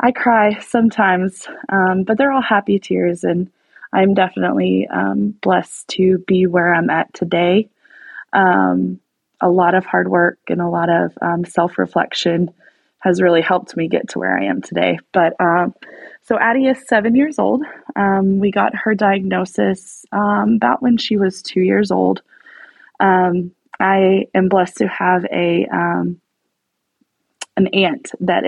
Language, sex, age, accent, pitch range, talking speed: English, female, 20-39, American, 170-215 Hz, 155 wpm